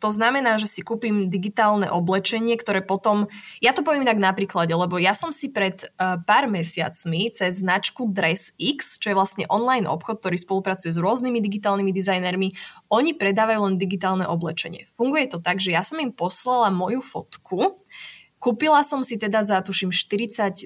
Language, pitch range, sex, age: Slovak, 185-235 Hz, female, 20-39